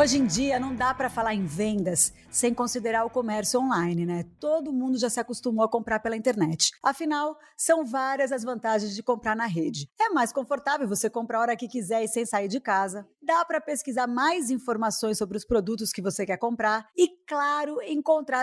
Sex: female